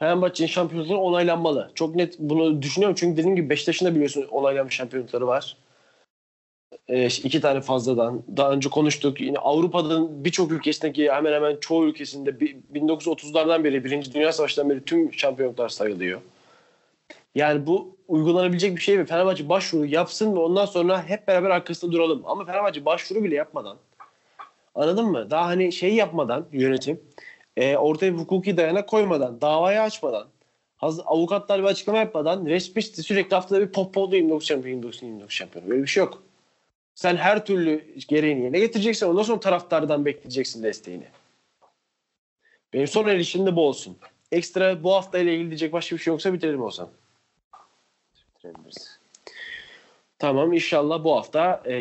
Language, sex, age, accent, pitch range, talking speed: Turkish, male, 40-59, native, 140-185 Hz, 145 wpm